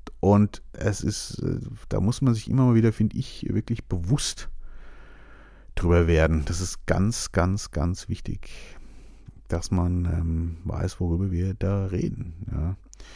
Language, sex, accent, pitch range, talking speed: German, male, German, 85-115 Hz, 140 wpm